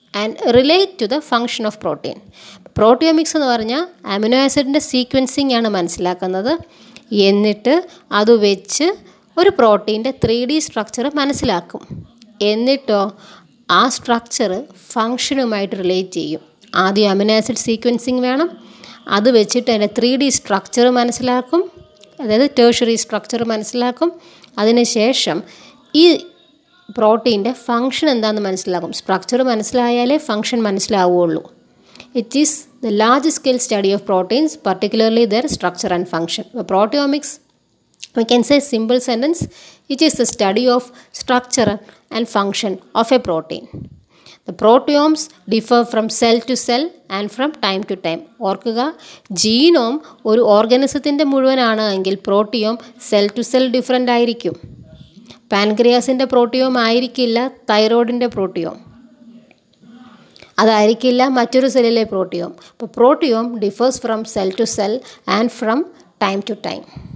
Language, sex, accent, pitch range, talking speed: Malayalam, female, native, 210-255 Hz, 120 wpm